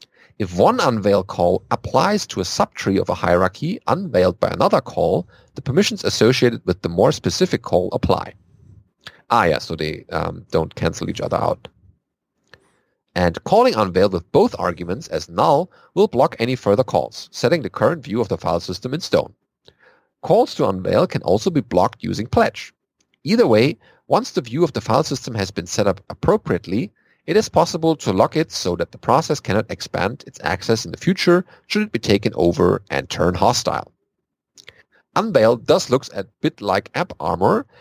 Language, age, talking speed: English, 40-59, 180 wpm